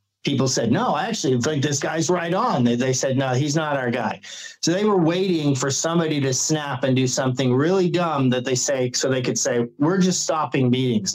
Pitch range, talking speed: 140-190 Hz, 220 wpm